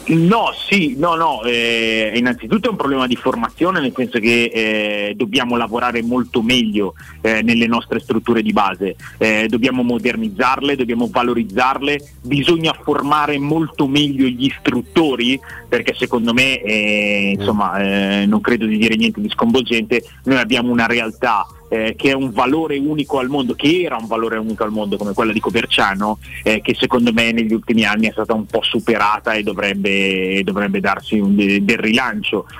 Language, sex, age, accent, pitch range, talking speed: Italian, male, 30-49, native, 110-135 Hz, 165 wpm